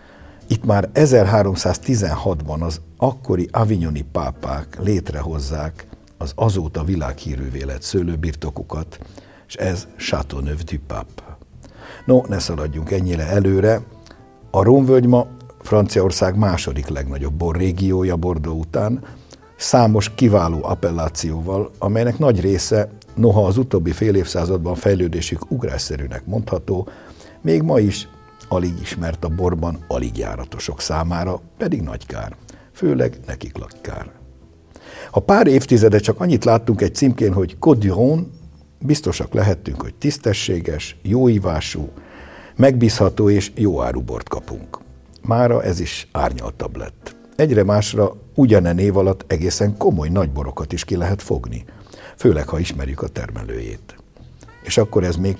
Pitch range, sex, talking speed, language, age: 80-105 Hz, male, 120 wpm, Hungarian, 60-79